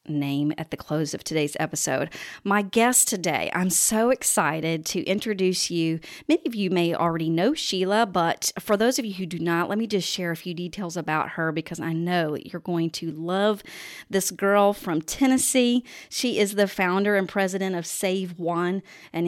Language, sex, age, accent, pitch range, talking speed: English, female, 40-59, American, 170-205 Hz, 190 wpm